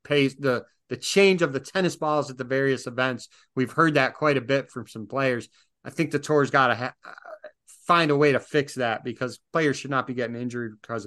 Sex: male